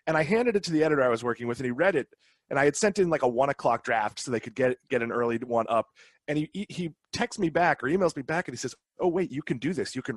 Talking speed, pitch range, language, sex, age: 325 wpm, 120-165 Hz, English, male, 30-49